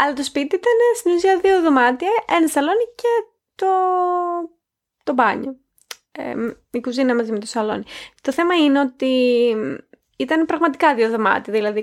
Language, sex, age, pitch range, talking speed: Greek, female, 20-39, 230-310 Hz, 140 wpm